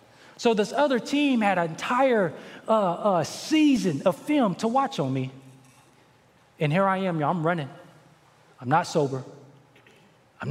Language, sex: English, male